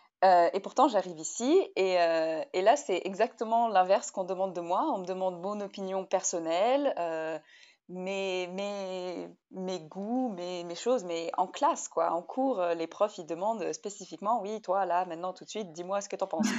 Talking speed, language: 190 wpm, French